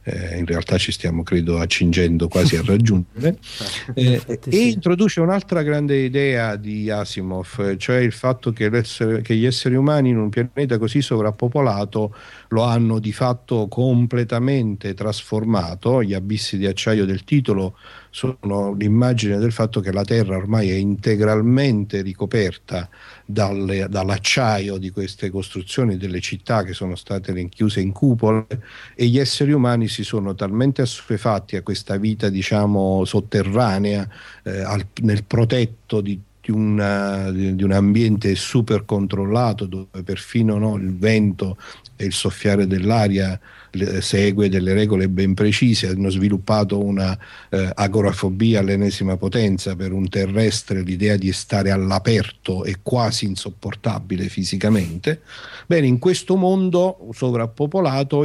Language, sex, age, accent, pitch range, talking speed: Italian, male, 50-69, native, 95-120 Hz, 135 wpm